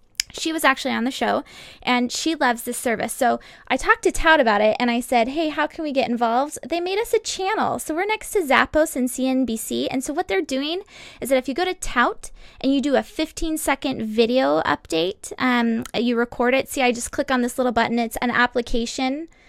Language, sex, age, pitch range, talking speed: English, female, 10-29, 235-290 Hz, 235 wpm